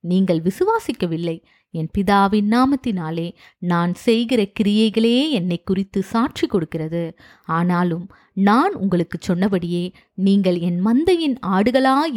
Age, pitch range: 20-39, 175-235 Hz